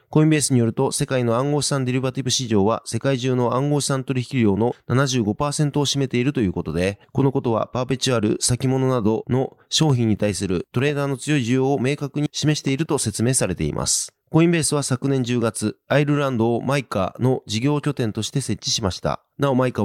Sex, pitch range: male, 115-140 Hz